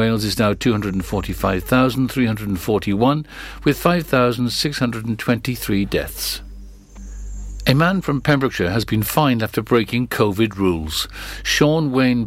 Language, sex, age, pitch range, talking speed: English, male, 60-79, 100-125 Hz, 100 wpm